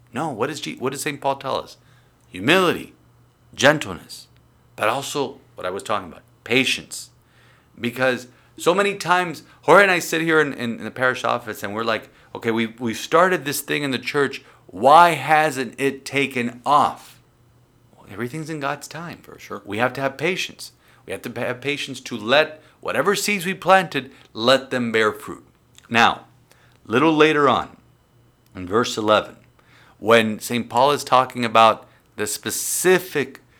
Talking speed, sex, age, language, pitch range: 170 wpm, male, 50-69, English, 105-140 Hz